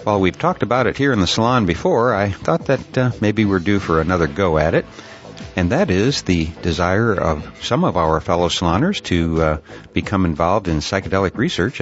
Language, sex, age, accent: English, male, 60-79, American